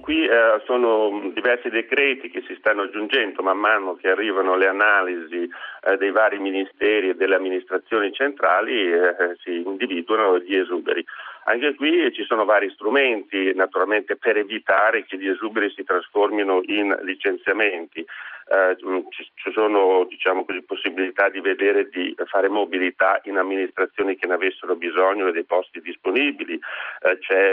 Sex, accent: male, native